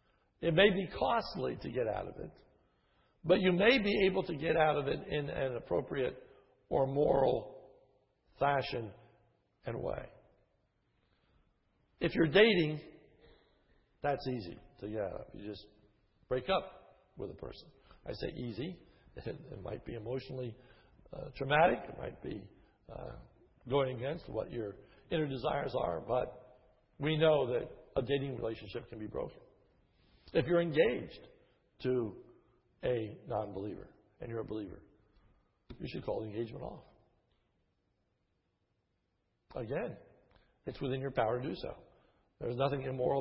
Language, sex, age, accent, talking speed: English, male, 60-79, American, 140 wpm